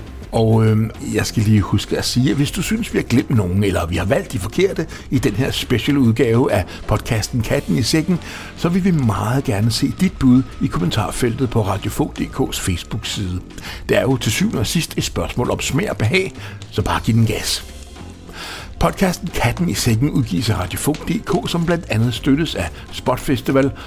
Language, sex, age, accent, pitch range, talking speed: Danish, male, 60-79, native, 100-145 Hz, 190 wpm